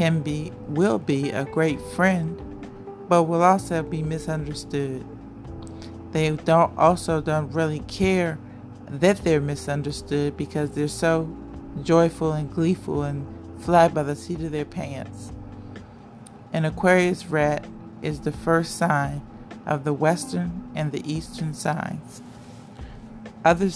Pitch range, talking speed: 115-165 Hz, 125 wpm